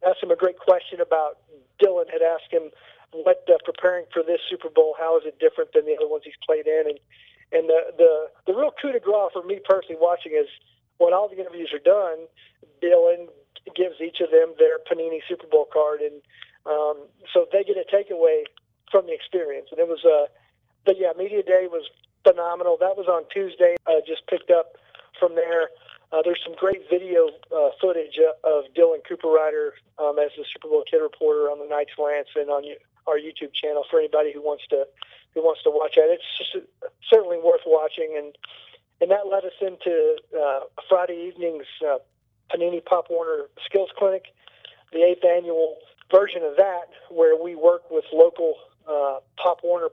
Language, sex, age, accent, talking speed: English, male, 50-69, American, 195 wpm